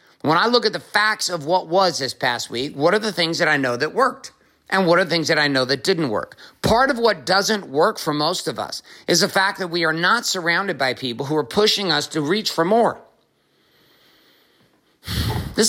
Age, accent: 50-69, American